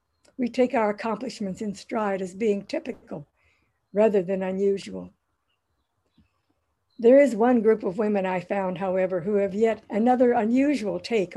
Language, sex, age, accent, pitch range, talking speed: English, female, 60-79, American, 185-240 Hz, 145 wpm